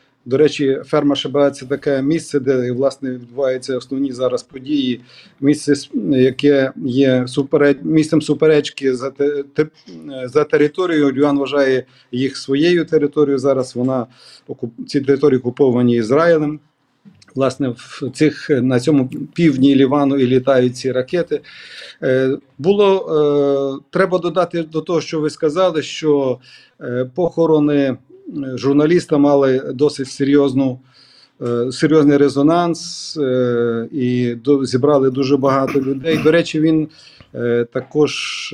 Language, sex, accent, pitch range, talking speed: Ukrainian, male, native, 130-150 Hz, 110 wpm